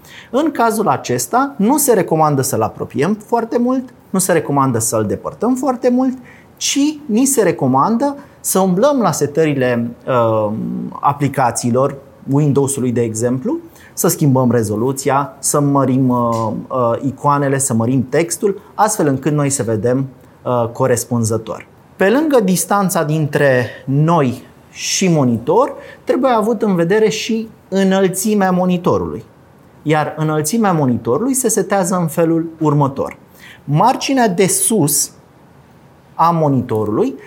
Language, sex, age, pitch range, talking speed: Romanian, male, 30-49, 130-195 Hz, 115 wpm